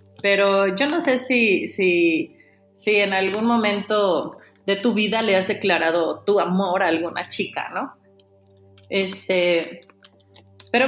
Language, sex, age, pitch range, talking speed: Spanish, female, 30-49, 165-225 Hz, 120 wpm